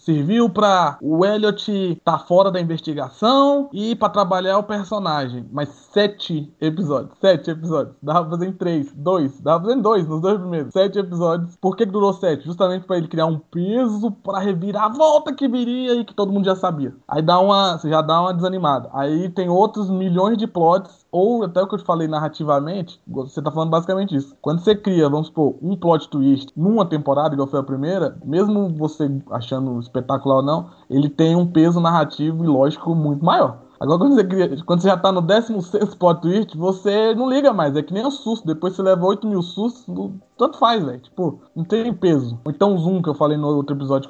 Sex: male